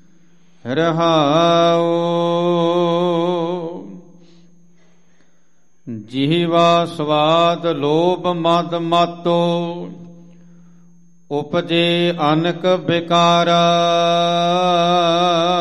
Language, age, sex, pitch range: Punjabi, 50-69, male, 170-175 Hz